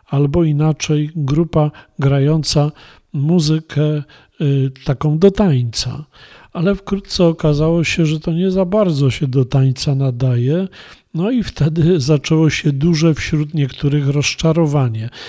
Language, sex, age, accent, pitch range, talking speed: Polish, male, 40-59, native, 140-180 Hz, 120 wpm